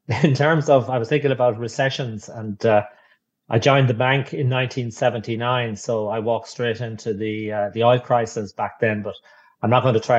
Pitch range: 105-120 Hz